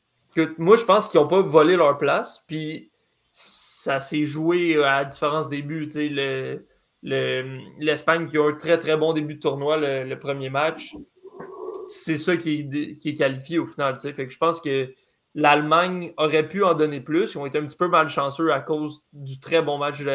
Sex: male